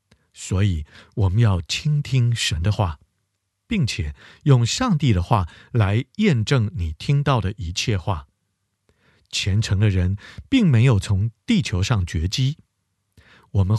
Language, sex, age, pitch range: Chinese, male, 50-69, 95-120 Hz